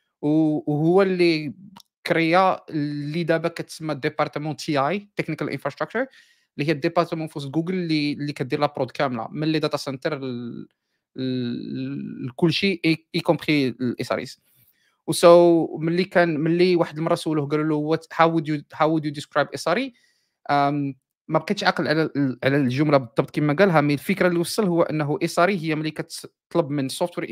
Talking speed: 145 wpm